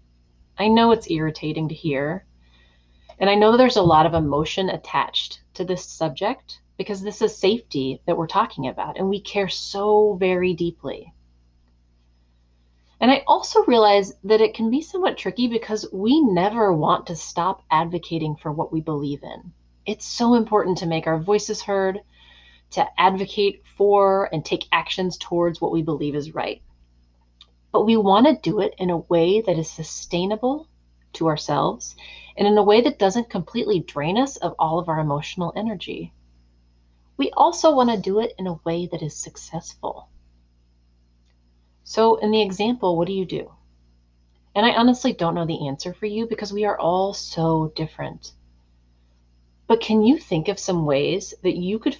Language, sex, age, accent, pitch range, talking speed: English, female, 30-49, American, 130-210 Hz, 170 wpm